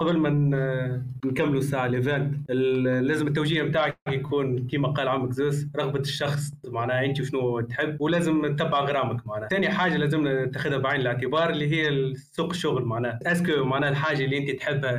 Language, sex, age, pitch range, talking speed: Arabic, male, 20-39, 130-155 Hz, 155 wpm